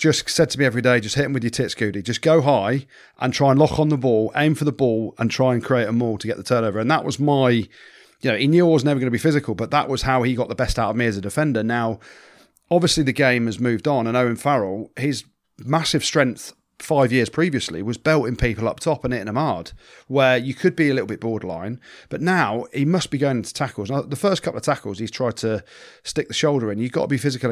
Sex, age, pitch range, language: male, 30-49, 110-140 Hz, English